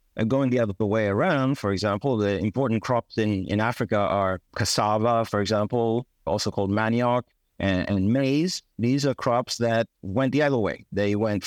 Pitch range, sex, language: 100-125 Hz, male, English